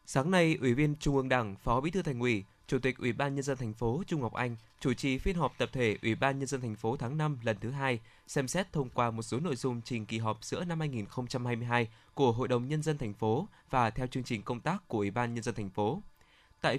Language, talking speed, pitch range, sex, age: Vietnamese, 270 wpm, 115-145 Hz, male, 20-39